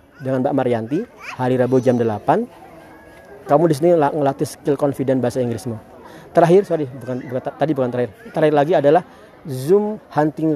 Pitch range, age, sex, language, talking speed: 130-160 Hz, 40-59, male, Indonesian, 155 wpm